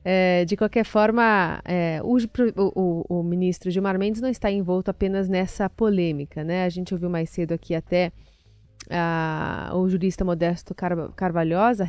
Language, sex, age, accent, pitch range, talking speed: Portuguese, female, 30-49, Brazilian, 170-205 Hz, 130 wpm